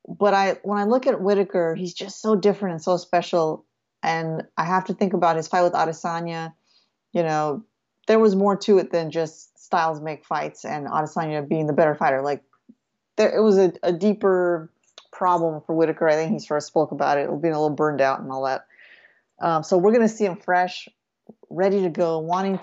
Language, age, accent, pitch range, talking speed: English, 30-49, American, 160-195 Hz, 210 wpm